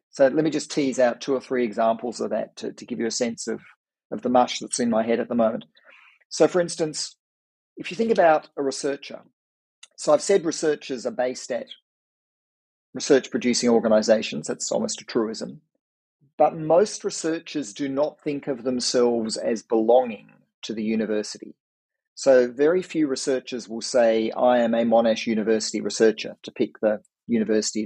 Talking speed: 175 wpm